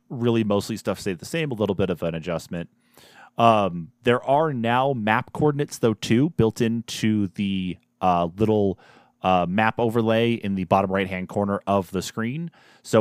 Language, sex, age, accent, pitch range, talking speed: English, male, 30-49, American, 95-115 Hz, 170 wpm